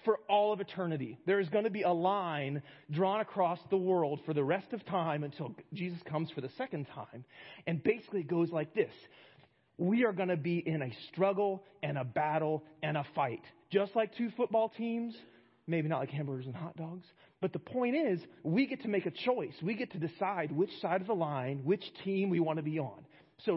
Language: English